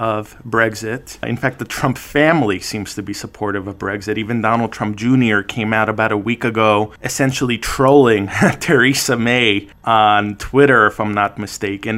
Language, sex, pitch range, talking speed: English, male, 105-125 Hz, 165 wpm